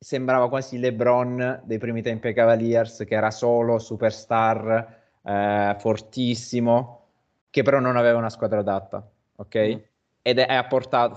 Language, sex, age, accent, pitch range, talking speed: Italian, male, 20-39, native, 105-125 Hz, 130 wpm